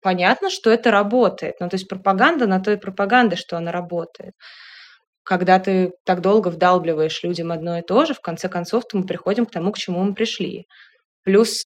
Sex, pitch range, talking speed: female, 180-225 Hz, 185 wpm